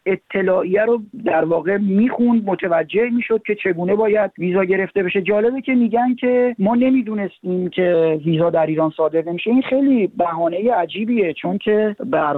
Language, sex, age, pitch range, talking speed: Persian, male, 40-59, 155-205 Hz, 165 wpm